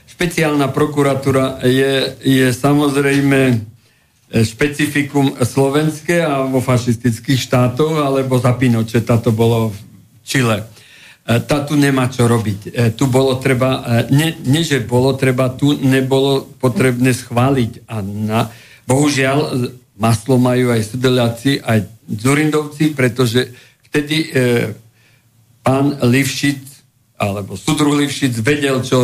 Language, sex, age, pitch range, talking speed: Slovak, male, 50-69, 120-140 Hz, 105 wpm